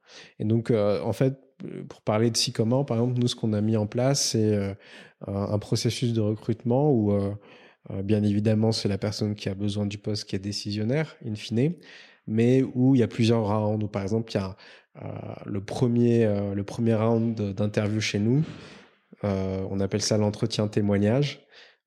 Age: 20-39